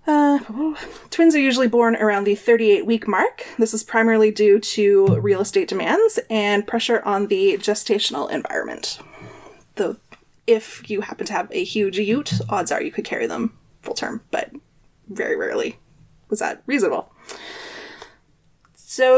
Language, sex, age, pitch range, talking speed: English, female, 20-39, 210-315 Hz, 150 wpm